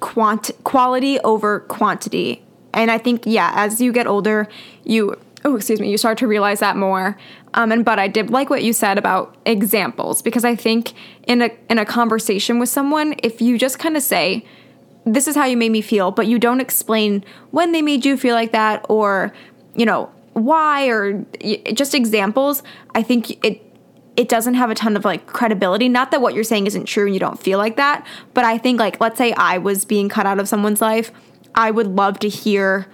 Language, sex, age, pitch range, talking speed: English, female, 20-39, 205-240 Hz, 215 wpm